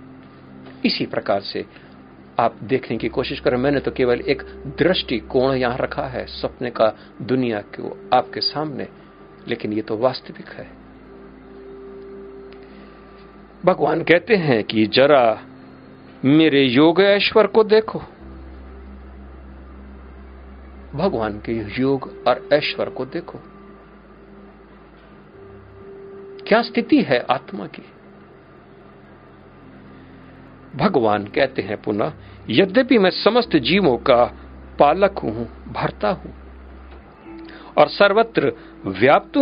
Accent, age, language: native, 50-69, Hindi